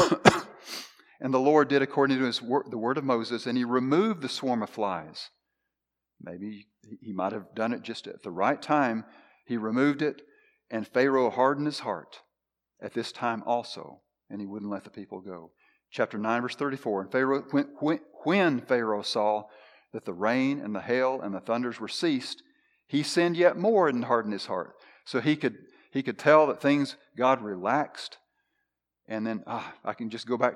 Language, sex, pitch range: English, male, 105-135 Hz